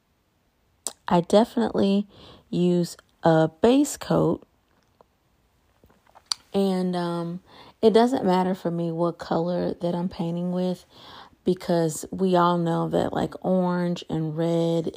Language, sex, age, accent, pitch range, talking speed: English, female, 30-49, American, 160-185 Hz, 110 wpm